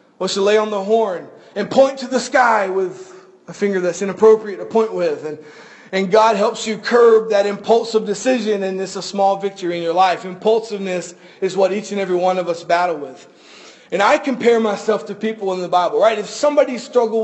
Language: English